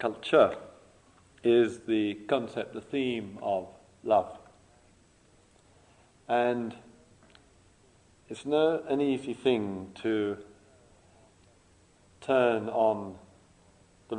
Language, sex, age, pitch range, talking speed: English, male, 50-69, 95-125 Hz, 75 wpm